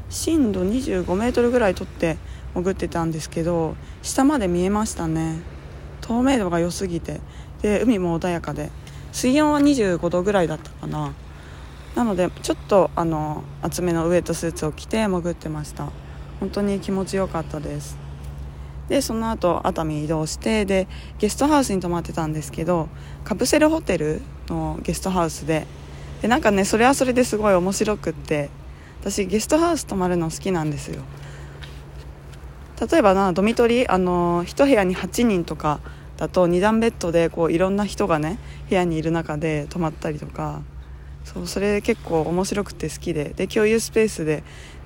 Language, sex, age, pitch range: Japanese, female, 20-39, 150-205 Hz